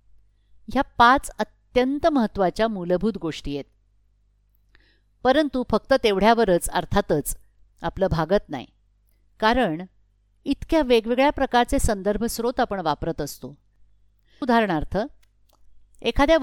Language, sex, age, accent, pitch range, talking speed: Marathi, female, 50-69, native, 150-245 Hz, 90 wpm